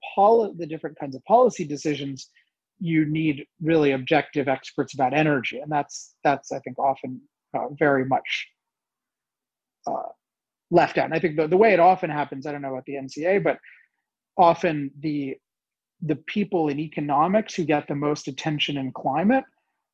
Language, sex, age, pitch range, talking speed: English, male, 30-49, 135-165 Hz, 165 wpm